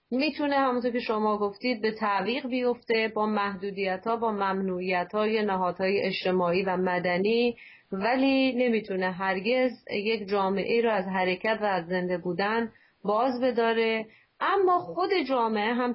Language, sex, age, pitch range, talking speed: Persian, female, 30-49, 190-235 Hz, 130 wpm